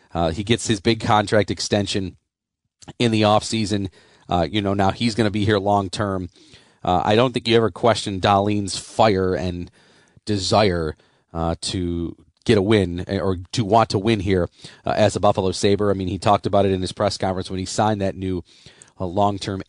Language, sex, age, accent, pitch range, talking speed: English, male, 40-59, American, 90-110 Hz, 200 wpm